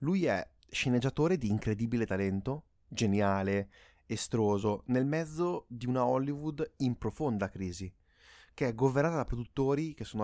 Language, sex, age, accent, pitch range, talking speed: Italian, male, 20-39, native, 105-135 Hz, 135 wpm